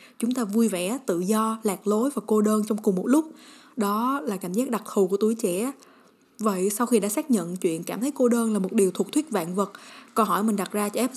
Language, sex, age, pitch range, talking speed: Vietnamese, female, 20-39, 190-235 Hz, 265 wpm